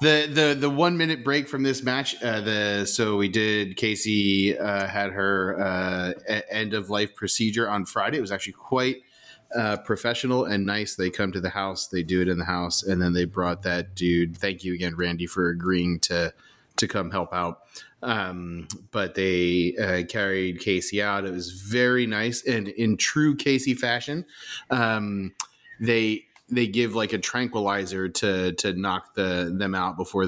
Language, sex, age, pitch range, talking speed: English, male, 30-49, 95-120 Hz, 175 wpm